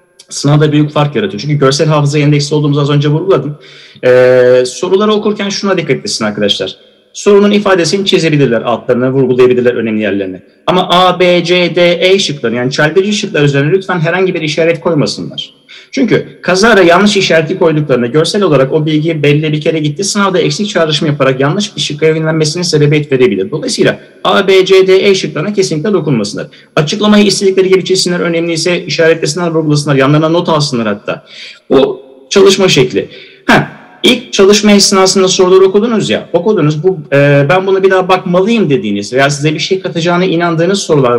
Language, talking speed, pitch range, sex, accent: Turkish, 160 wpm, 145-190 Hz, male, native